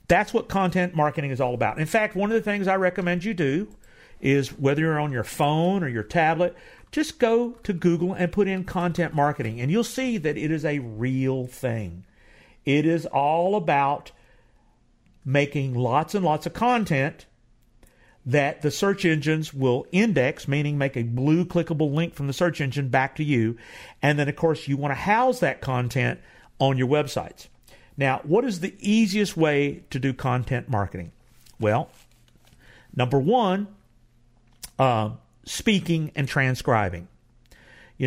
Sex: male